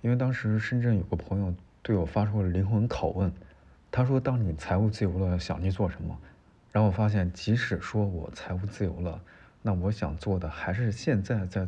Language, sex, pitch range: Chinese, male, 90-110 Hz